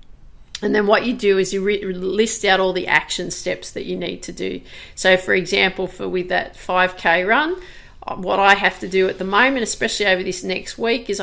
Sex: female